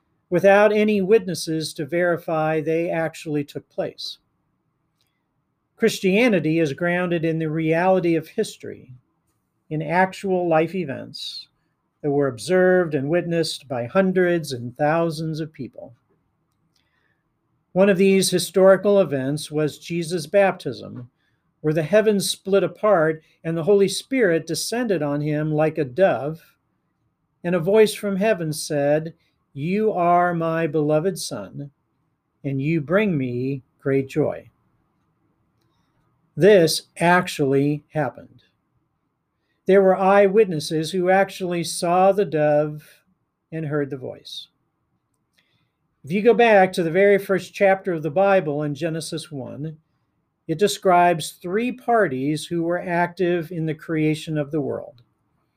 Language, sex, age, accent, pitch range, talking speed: English, male, 50-69, American, 150-185 Hz, 125 wpm